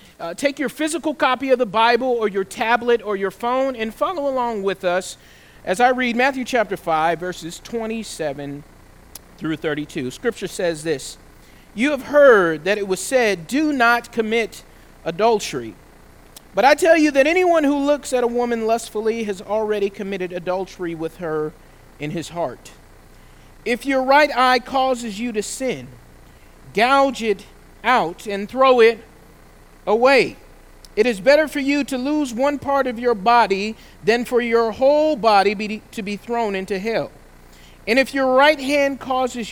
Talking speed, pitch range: 160 wpm, 180-255 Hz